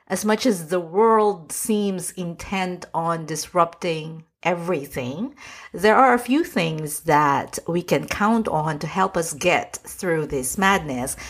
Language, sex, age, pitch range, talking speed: English, female, 50-69, 155-210 Hz, 145 wpm